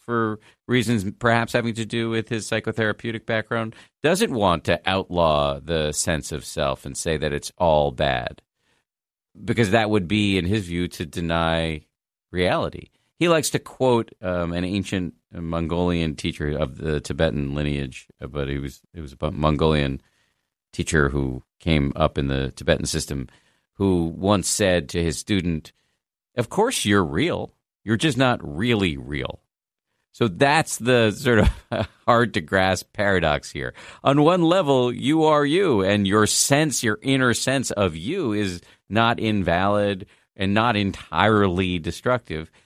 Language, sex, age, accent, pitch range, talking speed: English, male, 50-69, American, 80-120 Hz, 150 wpm